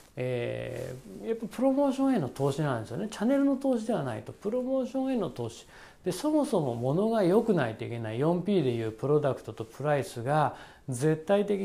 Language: Japanese